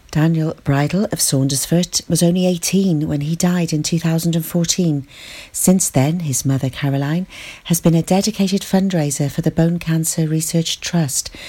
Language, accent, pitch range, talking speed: English, British, 140-180 Hz, 145 wpm